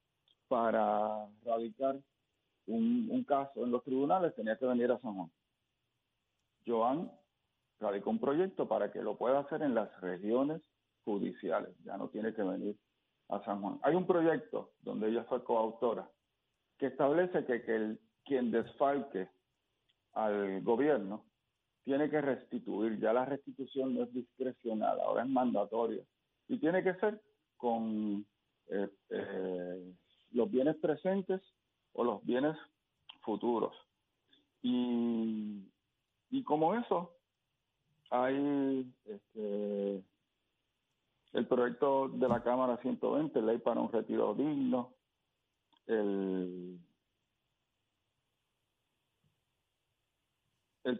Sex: male